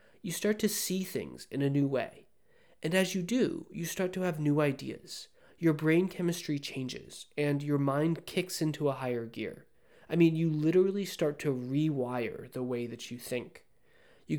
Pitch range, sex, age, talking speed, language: 140-180 Hz, male, 20-39, 185 wpm, English